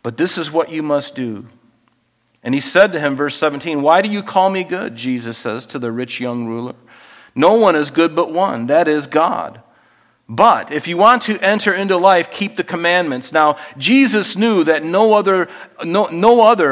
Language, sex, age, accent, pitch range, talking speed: English, male, 50-69, American, 140-195 Hz, 190 wpm